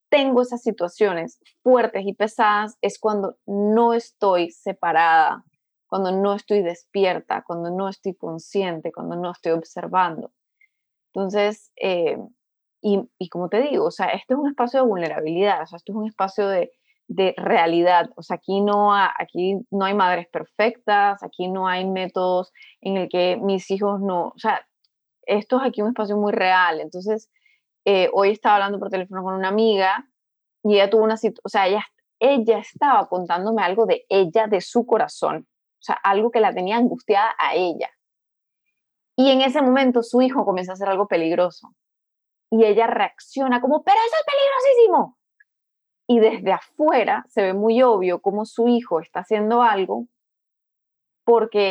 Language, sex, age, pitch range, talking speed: Spanish, female, 20-39, 185-235 Hz, 170 wpm